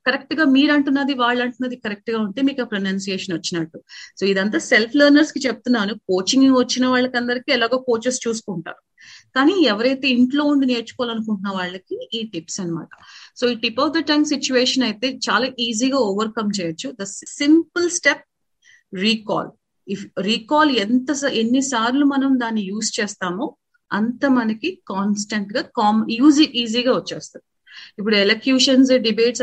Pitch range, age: 205-265 Hz, 30-49